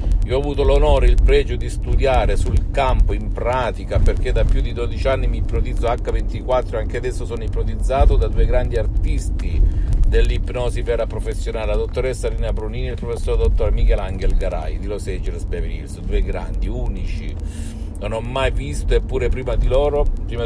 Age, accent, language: 50-69, native, Italian